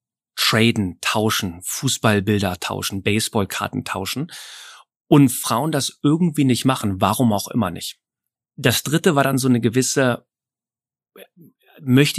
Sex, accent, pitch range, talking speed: male, German, 110-135 Hz, 120 wpm